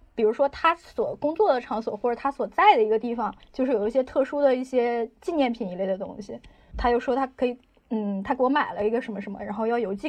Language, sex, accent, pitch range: Chinese, female, native, 220-275 Hz